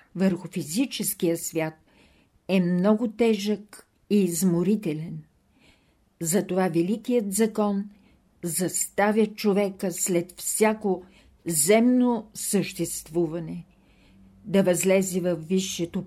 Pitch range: 175-210 Hz